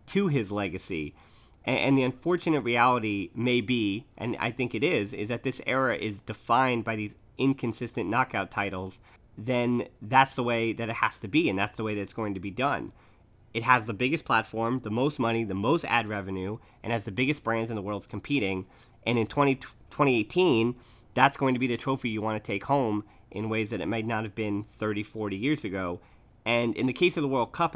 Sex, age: male, 30-49